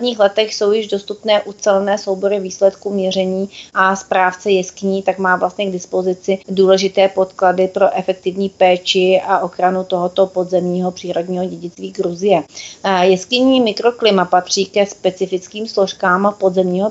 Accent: native